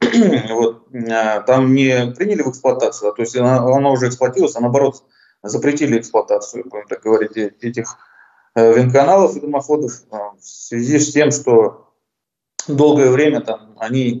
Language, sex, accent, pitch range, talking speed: Russian, male, native, 115-140 Hz, 135 wpm